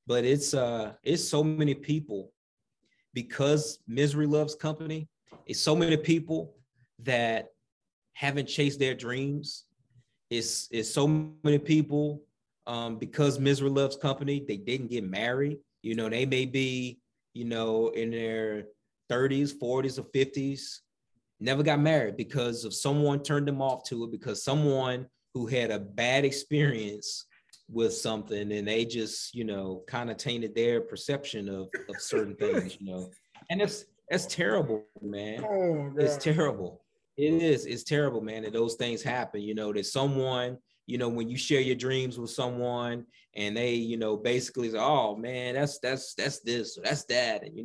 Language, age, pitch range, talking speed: English, 30-49, 115-145 Hz, 160 wpm